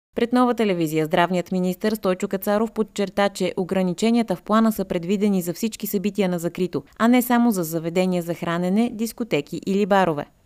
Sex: female